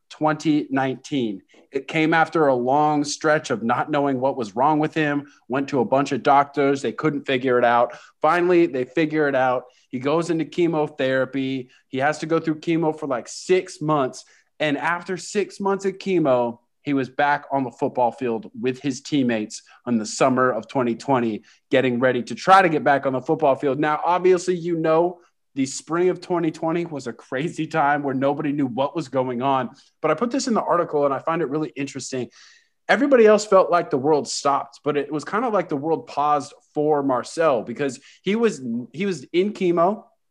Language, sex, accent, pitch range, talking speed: English, male, American, 130-170 Hz, 200 wpm